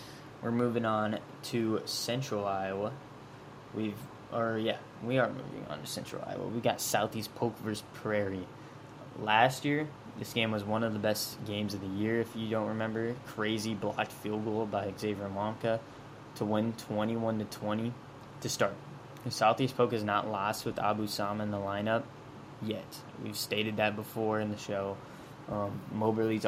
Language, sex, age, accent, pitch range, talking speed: English, male, 10-29, American, 105-125 Hz, 170 wpm